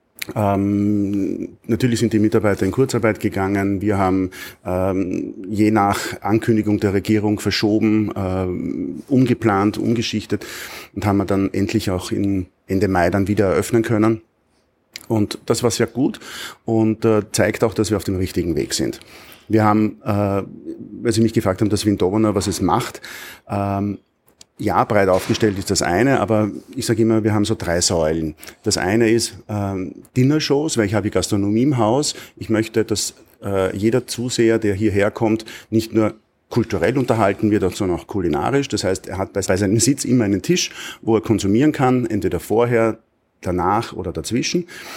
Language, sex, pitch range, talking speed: German, male, 100-115 Hz, 170 wpm